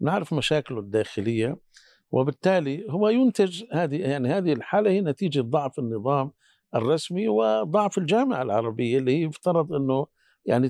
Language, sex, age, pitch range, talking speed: Arabic, male, 60-79, 125-170 Hz, 125 wpm